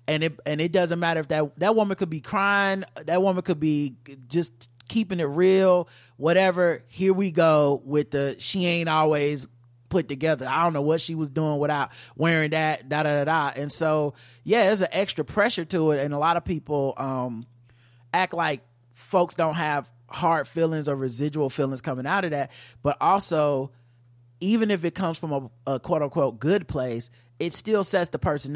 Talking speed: 185 wpm